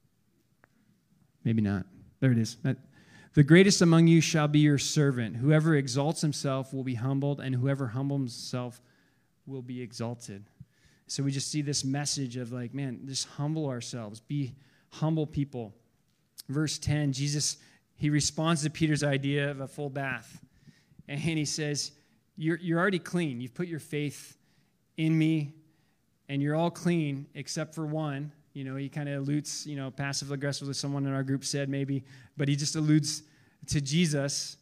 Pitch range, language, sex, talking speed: 135-160 Hz, English, male, 165 wpm